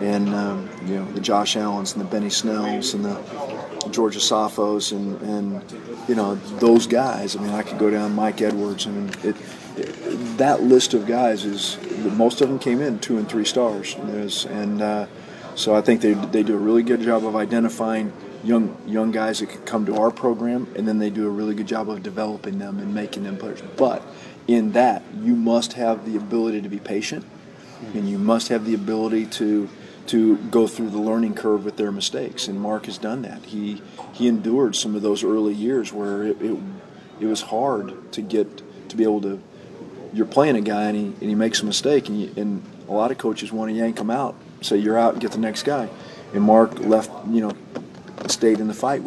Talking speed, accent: 220 wpm, American